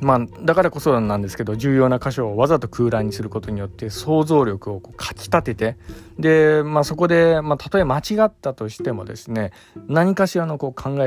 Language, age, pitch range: Japanese, 20-39, 105-140 Hz